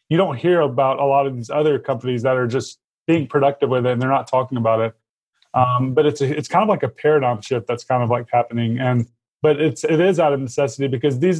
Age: 20-39